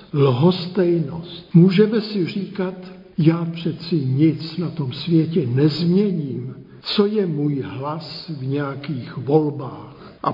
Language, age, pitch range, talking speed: Czech, 60-79, 145-175 Hz, 110 wpm